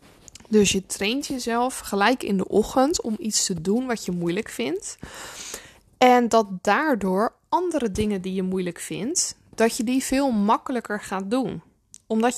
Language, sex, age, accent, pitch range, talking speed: Dutch, female, 20-39, Dutch, 200-250 Hz, 160 wpm